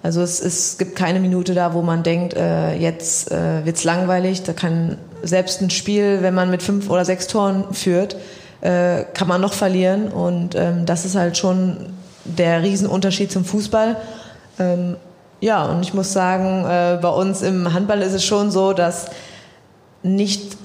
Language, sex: German, female